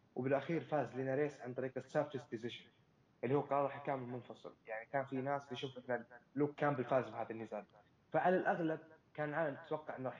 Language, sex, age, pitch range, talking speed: Arabic, male, 20-39, 125-150 Hz, 175 wpm